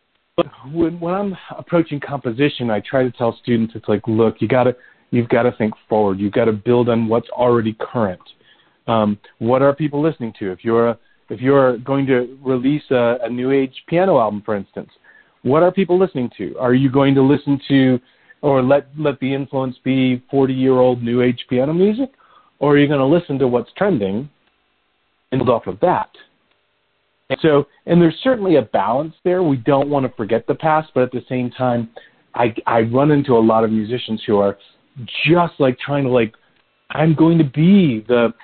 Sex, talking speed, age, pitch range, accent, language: male, 195 wpm, 40-59, 120-150 Hz, American, English